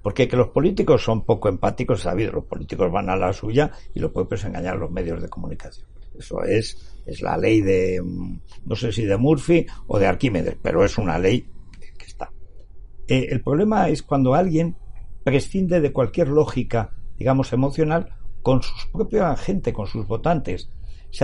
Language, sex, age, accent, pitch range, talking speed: Spanish, male, 60-79, Spanish, 95-135 Hz, 180 wpm